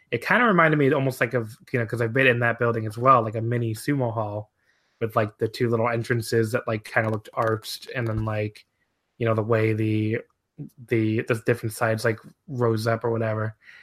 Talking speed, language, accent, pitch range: 225 wpm, English, American, 115-135 Hz